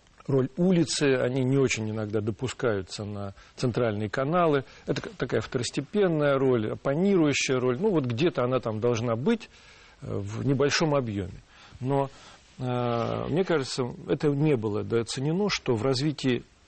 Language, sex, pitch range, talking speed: Russian, male, 110-150 Hz, 130 wpm